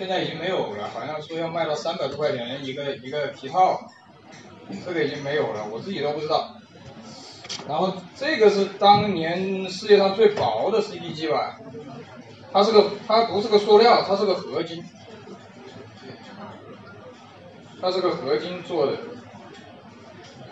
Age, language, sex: 20-39, Chinese, male